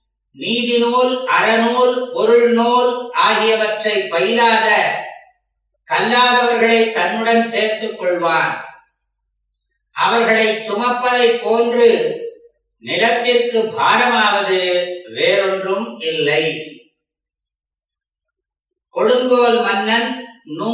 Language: English